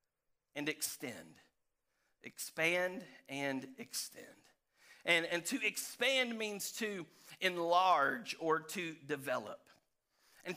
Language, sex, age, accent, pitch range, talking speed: English, male, 40-59, American, 130-180 Hz, 90 wpm